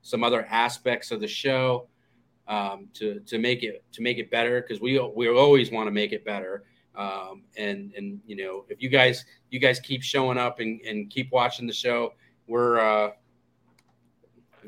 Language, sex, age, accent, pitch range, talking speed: English, male, 30-49, American, 105-135 Hz, 185 wpm